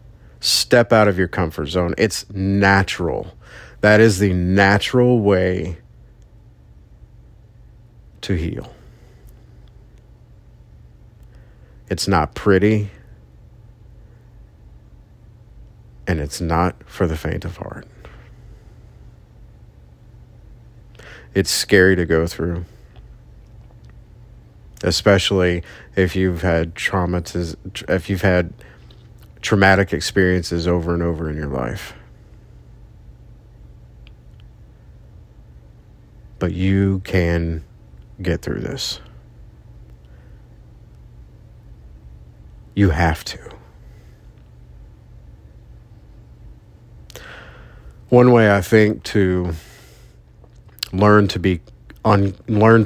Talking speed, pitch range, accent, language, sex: 75 wpm, 85-105 Hz, American, English, male